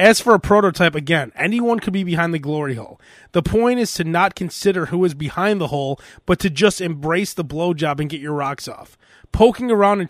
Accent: American